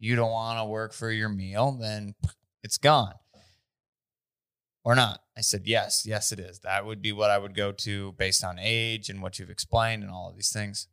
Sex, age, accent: male, 20-39, American